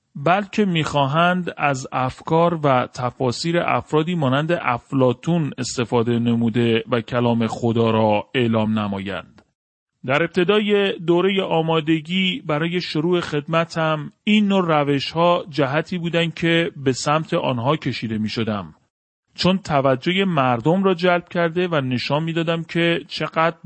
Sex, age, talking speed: male, 40-59, 120 wpm